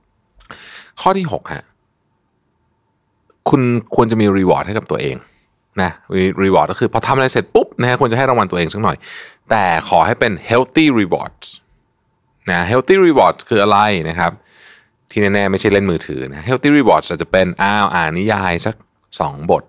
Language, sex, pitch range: Thai, male, 90-120 Hz